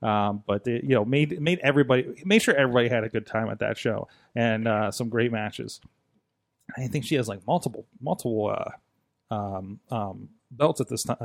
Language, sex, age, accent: English, male, 30-49, American